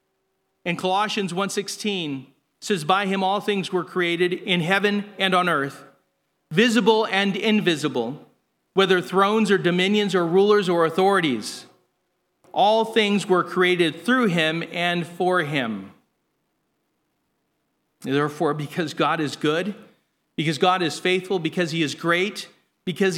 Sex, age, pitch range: male, 40-59, 135-195 Hz